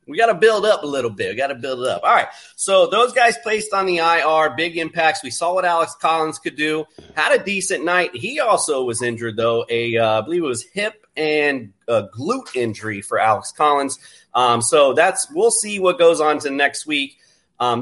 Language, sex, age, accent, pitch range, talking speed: English, male, 30-49, American, 120-175 Hz, 230 wpm